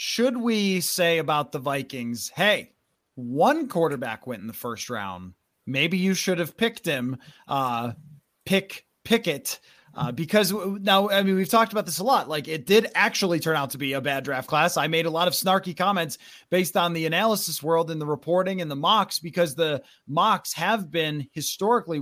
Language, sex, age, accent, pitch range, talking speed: English, male, 30-49, American, 150-190 Hz, 195 wpm